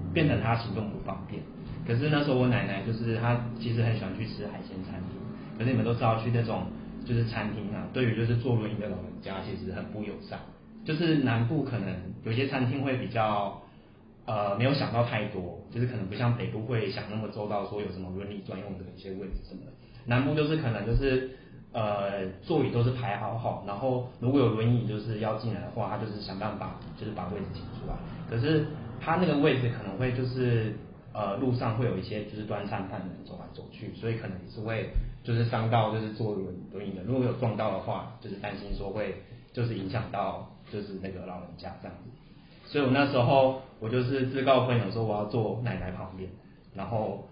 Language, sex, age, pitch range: Chinese, male, 30-49, 100-125 Hz